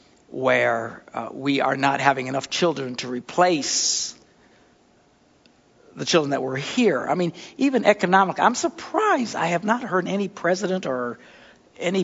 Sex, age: male, 60-79